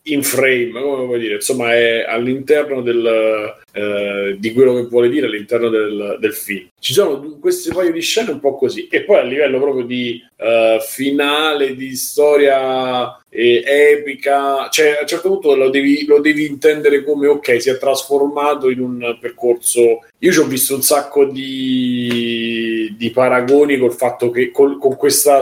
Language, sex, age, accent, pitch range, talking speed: Italian, male, 30-49, native, 120-145 Hz, 175 wpm